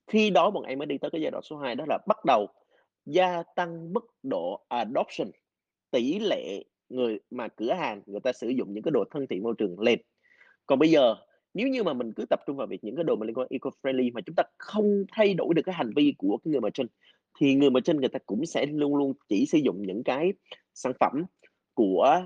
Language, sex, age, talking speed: Vietnamese, male, 20-39, 245 wpm